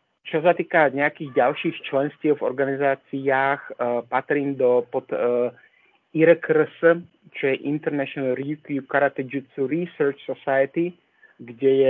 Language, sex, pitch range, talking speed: Slovak, male, 125-150 Hz, 120 wpm